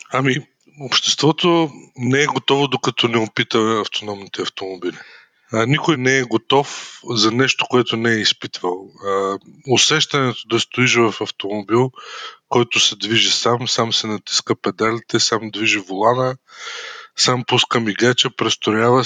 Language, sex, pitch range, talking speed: Bulgarian, male, 110-125 Hz, 130 wpm